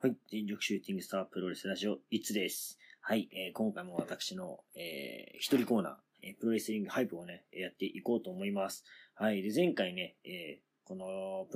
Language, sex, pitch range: Japanese, male, 100-140 Hz